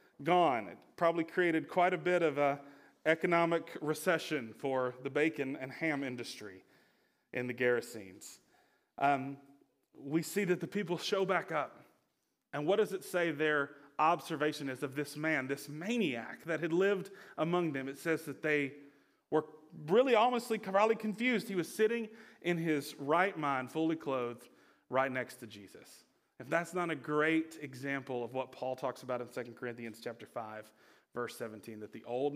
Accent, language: American, English